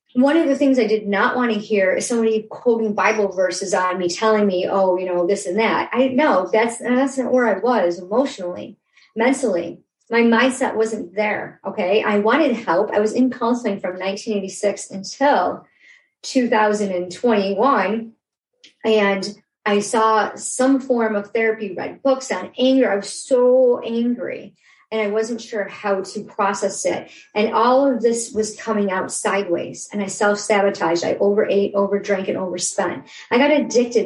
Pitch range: 195-245 Hz